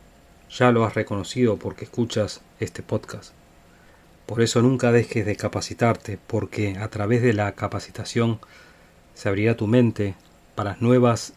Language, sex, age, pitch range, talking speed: Spanish, male, 40-59, 100-120 Hz, 135 wpm